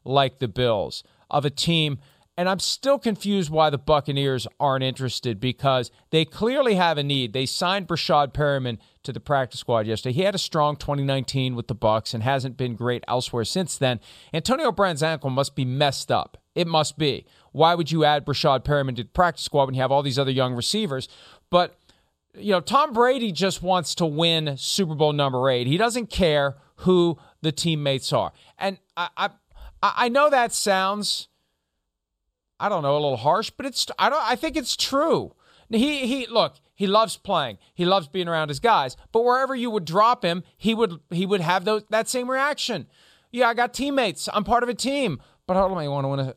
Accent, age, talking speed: American, 40-59, 205 wpm